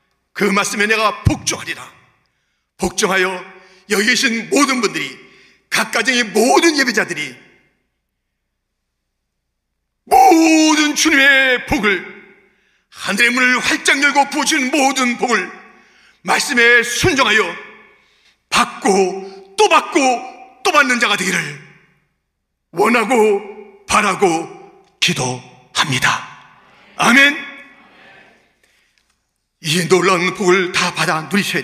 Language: Korean